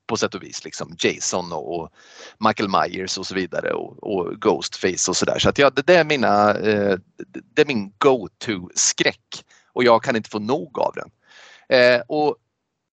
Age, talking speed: 30-49, 180 wpm